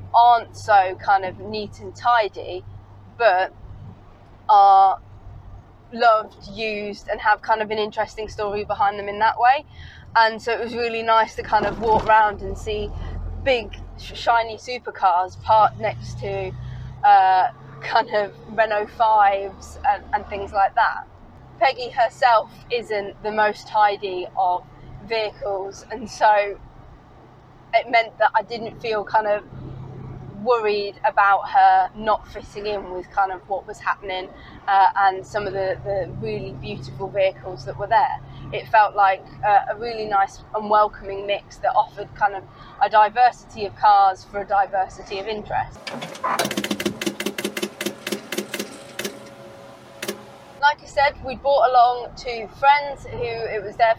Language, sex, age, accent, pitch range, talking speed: English, female, 20-39, British, 195-230 Hz, 140 wpm